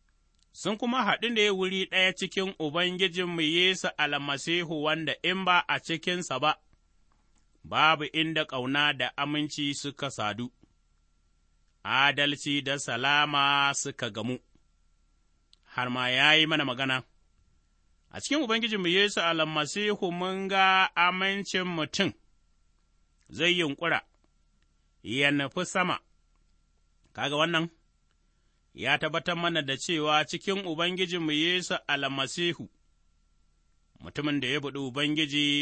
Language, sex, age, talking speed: English, male, 30-49, 110 wpm